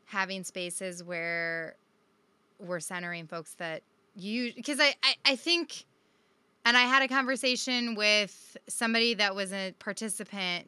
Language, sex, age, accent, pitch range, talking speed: English, female, 20-39, American, 185-225 Hz, 135 wpm